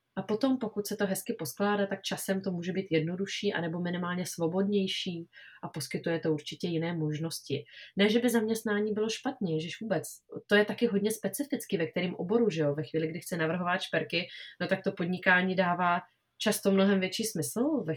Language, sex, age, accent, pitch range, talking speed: Czech, female, 20-39, native, 170-205 Hz, 185 wpm